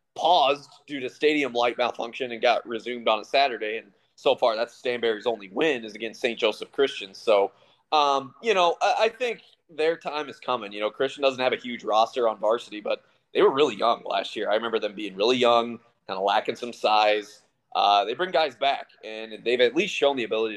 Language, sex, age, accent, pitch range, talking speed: English, male, 30-49, American, 115-180 Hz, 220 wpm